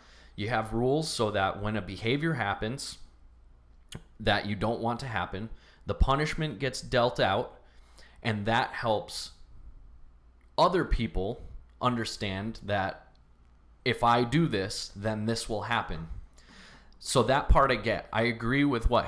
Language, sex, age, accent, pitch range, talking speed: English, male, 20-39, American, 85-120 Hz, 140 wpm